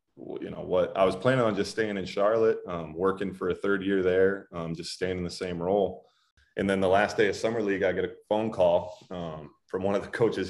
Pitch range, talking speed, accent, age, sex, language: 85-100 Hz, 250 wpm, American, 30-49, male, English